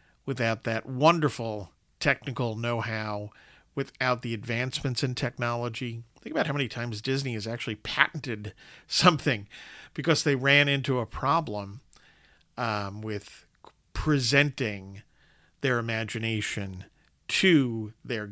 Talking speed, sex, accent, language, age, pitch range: 110 wpm, male, American, English, 50-69, 115-160 Hz